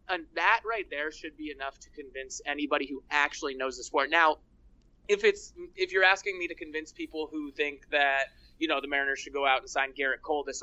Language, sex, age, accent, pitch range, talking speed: English, male, 20-39, American, 140-180 Hz, 225 wpm